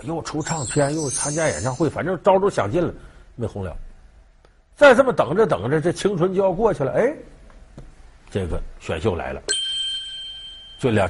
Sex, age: male, 50-69